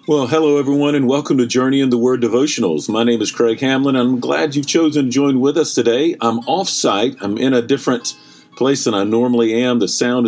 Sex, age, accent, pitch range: male, 50-69, American, 100-130 Hz